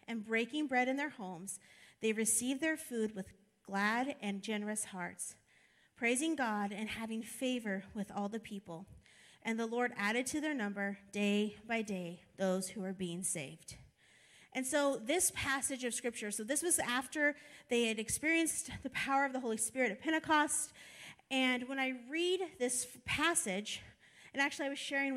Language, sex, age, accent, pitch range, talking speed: English, female, 30-49, American, 215-285 Hz, 170 wpm